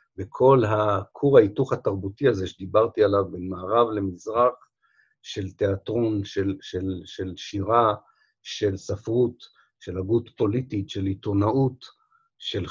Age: 50-69